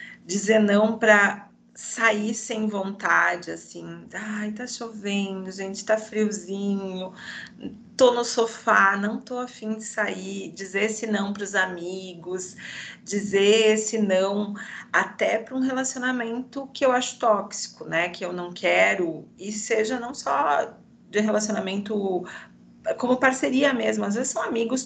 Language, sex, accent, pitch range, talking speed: Portuguese, female, Brazilian, 185-230 Hz, 135 wpm